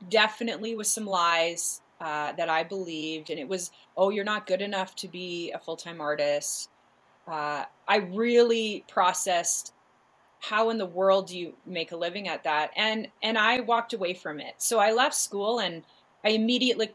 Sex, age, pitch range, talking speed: female, 30-49, 175-220 Hz, 180 wpm